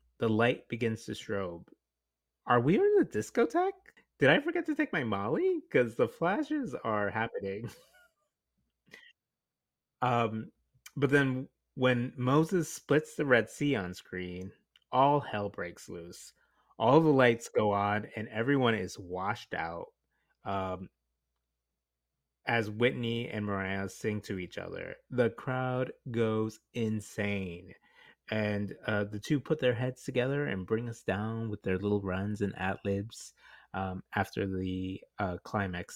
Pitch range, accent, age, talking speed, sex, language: 95-130 Hz, American, 30-49, 140 wpm, male, English